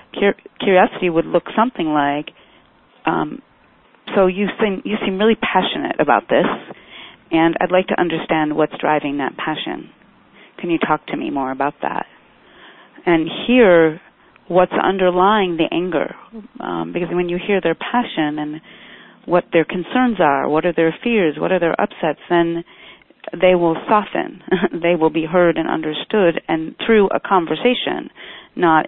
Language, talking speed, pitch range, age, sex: English, 150 wpm, 155-190 Hz, 40-59, female